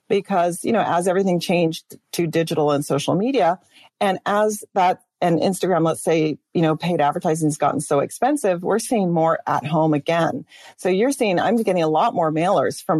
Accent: American